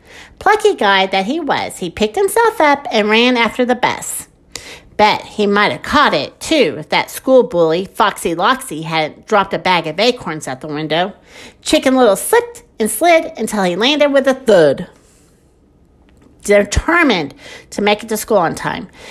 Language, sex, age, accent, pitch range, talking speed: English, female, 50-69, American, 205-305 Hz, 175 wpm